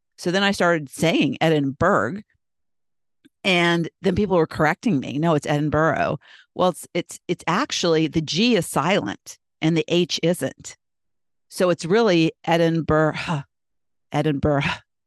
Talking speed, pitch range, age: 130 wpm, 150-180 Hz, 50-69